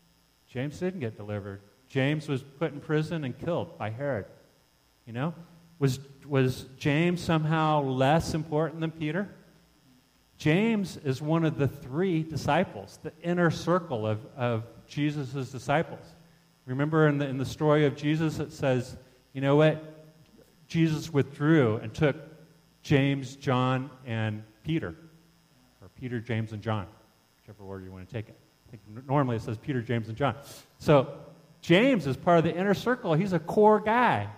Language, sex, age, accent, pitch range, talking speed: English, male, 40-59, American, 125-160 Hz, 155 wpm